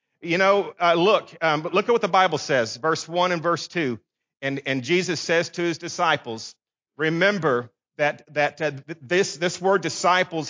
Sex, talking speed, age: male, 185 wpm, 40-59